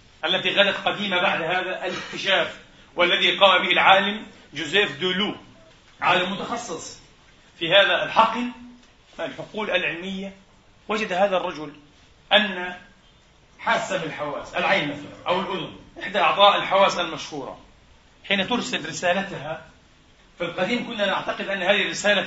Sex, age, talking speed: male, 40-59, 115 wpm